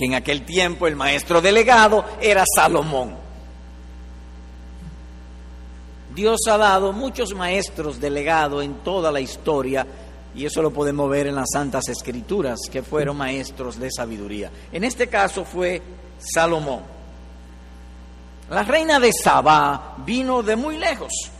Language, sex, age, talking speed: Spanish, male, 50-69, 125 wpm